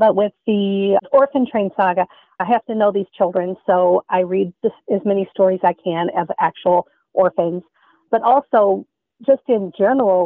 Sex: female